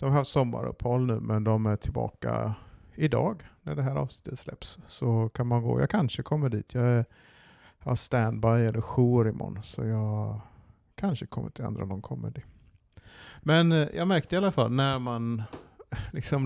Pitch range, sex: 110-130 Hz, male